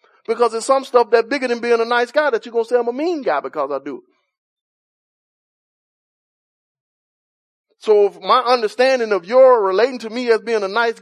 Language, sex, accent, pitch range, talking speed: English, male, American, 230-290 Hz, 195 wpm